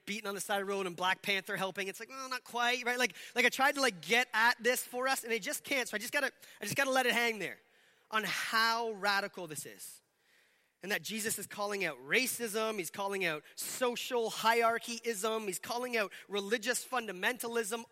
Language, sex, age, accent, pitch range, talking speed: English, male, 30-49, American, 160-230 Hz, 220 wpm